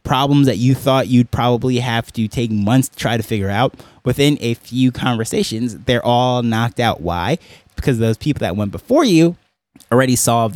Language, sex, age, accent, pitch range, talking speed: English, male, 20-39, American, 105-130 Hz, 190 wpm